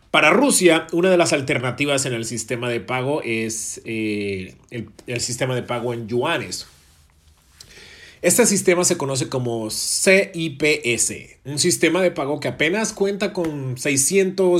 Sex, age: male, 40-59